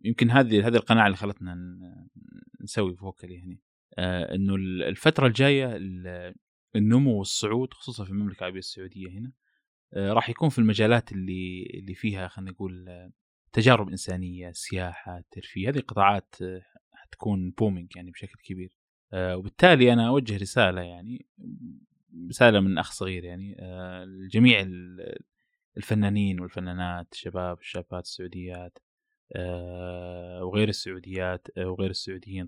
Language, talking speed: Arabic, 115 wpm